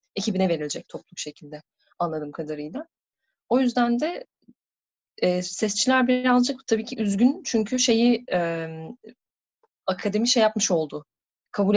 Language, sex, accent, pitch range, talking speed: Turkish, female, native, 170-220 Hz, 115 wpm